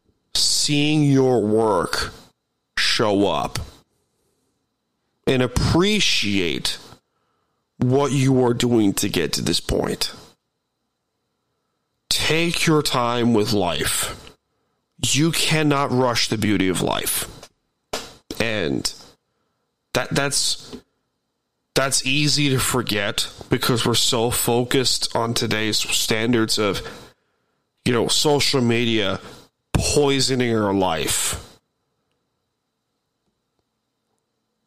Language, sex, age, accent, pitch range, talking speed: English, male, 30-49, American, 110-135 Hz, 85 wpm